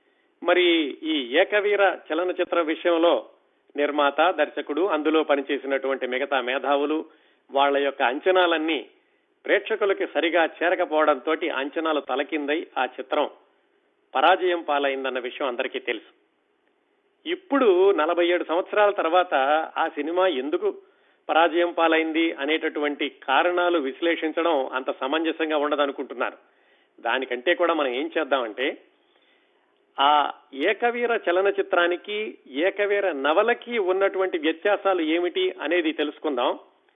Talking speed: 95 wpm